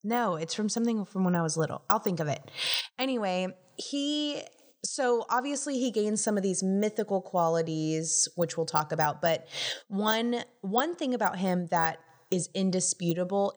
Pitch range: 160-210 Hz